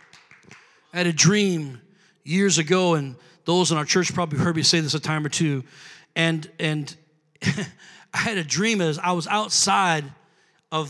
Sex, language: male, English